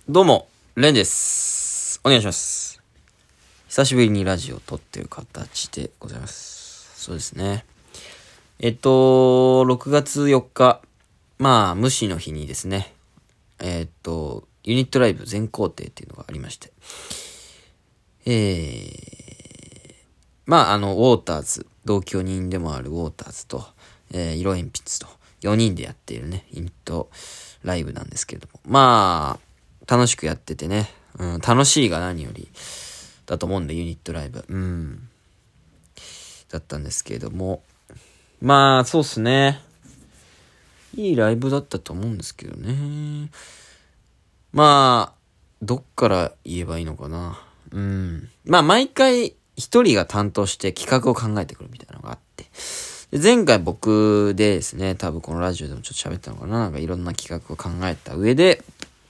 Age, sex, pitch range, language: 20-39, male, 85-125 Hz, Japanese